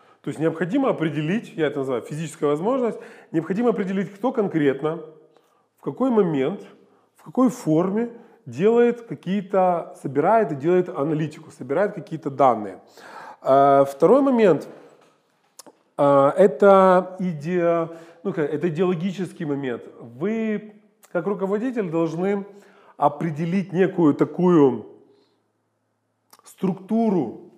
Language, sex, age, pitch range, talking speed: Russian, male, 20-39, 150-195 Hz, 85 wpm